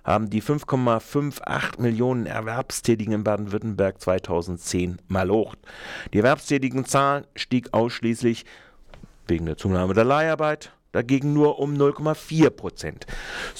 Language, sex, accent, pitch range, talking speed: German, male, German, 105-145 Hz, 100 wpm